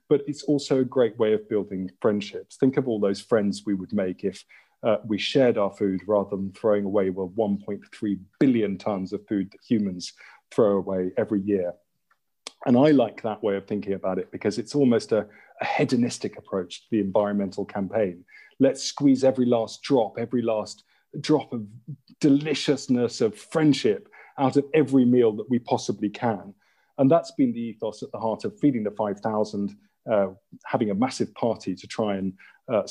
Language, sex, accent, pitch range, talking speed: English, male, British, 100-130 Hz, 180 wpm